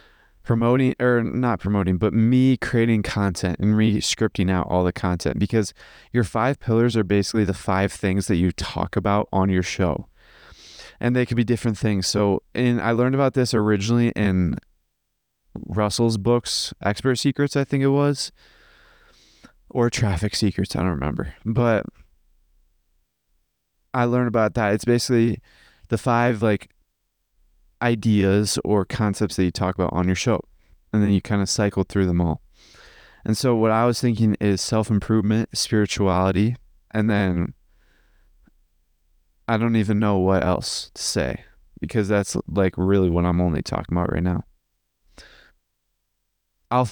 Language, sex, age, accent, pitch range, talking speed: English, male, 20-39, American, 90-115 Hz, 150 wpm